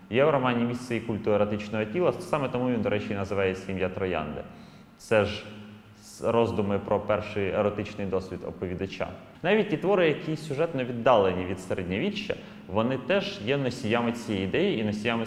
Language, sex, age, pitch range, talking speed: Ukrainian, male, 20-39, 100-120 Hz, 160 wpm